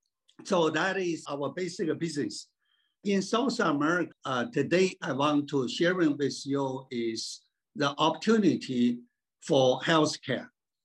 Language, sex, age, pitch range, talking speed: Spanish, male, 60-79, 135-170 Hz, 125 wpm